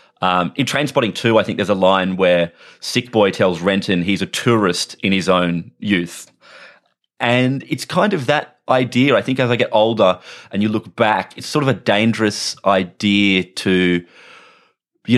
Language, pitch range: English, 90-120 Hz